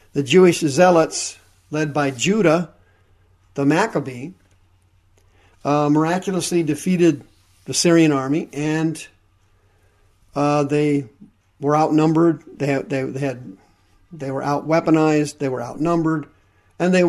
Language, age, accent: English, 50-69, American